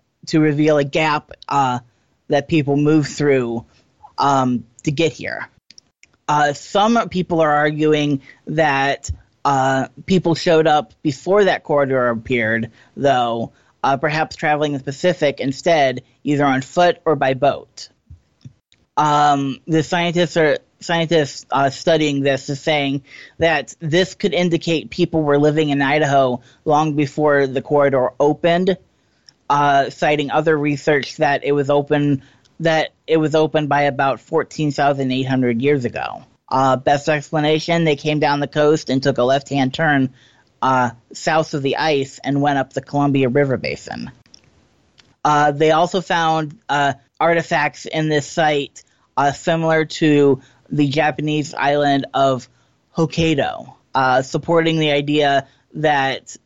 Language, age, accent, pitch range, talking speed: English, 30-49, American, 135-155 Hz, 135 wpm